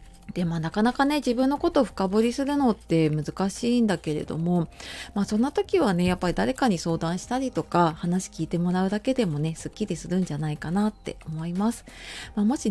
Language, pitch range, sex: Japanese, 165-230 Hz, female